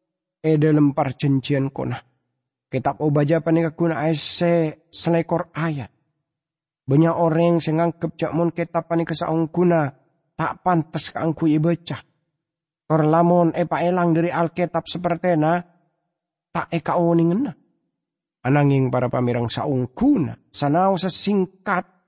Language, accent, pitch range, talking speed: English, Indonesian, 150-180 Hz, 115 wpm